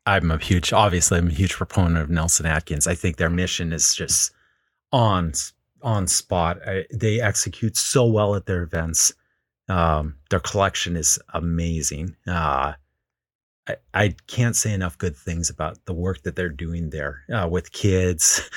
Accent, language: American, English